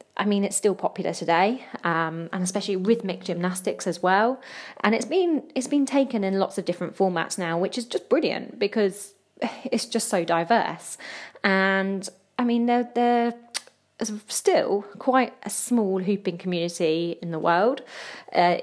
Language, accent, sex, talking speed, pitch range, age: English, British, female, 160 wpm, 180-225 Hz, 20-39